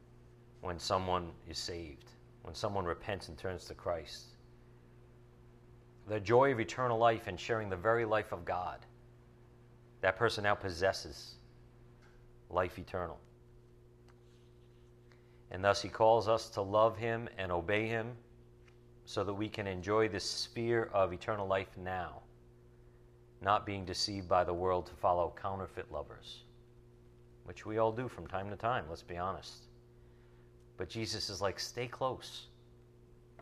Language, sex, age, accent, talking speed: English, male, 40-59, American, 140 wpm